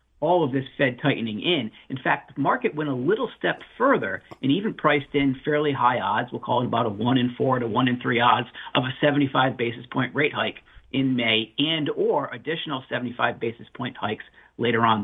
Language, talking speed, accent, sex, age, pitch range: English, 210 wpm, American, male, 50-69, 125-150 Hz